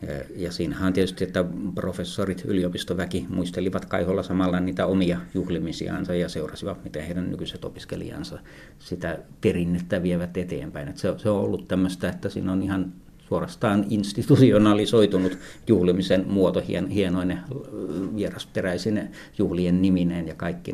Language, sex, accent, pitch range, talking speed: Finnish, male, native, 90-100 Hz, 130 wpm